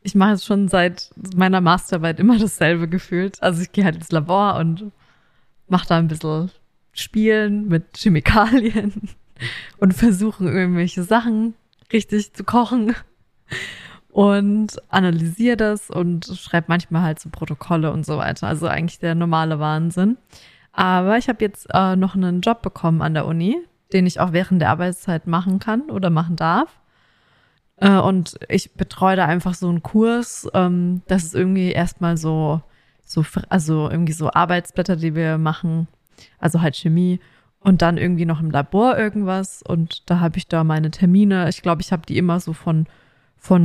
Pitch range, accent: 165-200 Hz, German